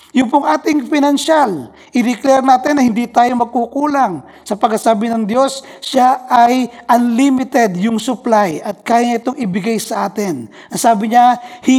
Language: Filipino